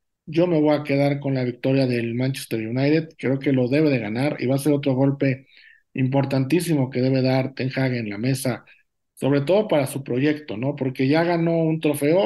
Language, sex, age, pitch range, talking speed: Spanish, male, 50-69, 135-160 Hz, 210 wpm